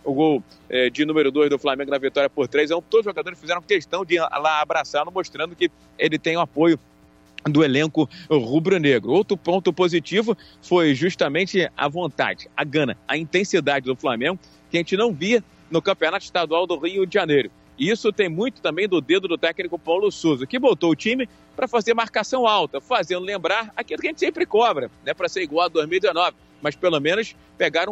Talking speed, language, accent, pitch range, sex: 200 wpm, Portuguese, Brazilian, 155-205 Hz, male